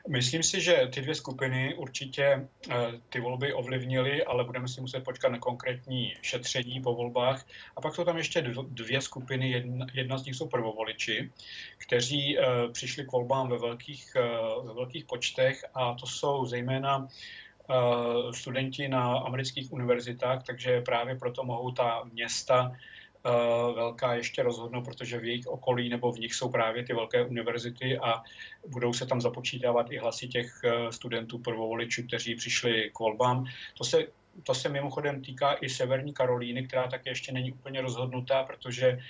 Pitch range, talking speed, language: 120-135 Hz, 150 wpm, Czech